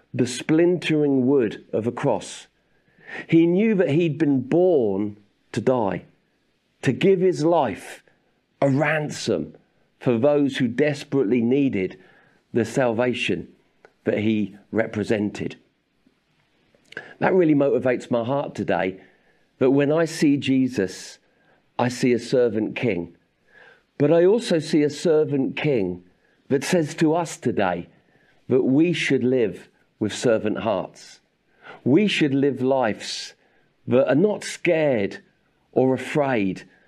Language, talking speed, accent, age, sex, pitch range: English, 120 wpm, British, 50-69, male, 115-150 Hz